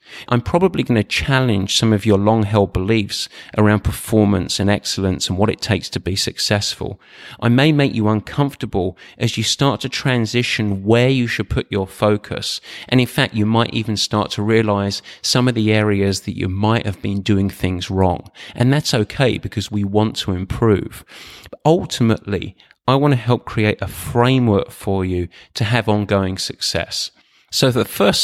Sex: male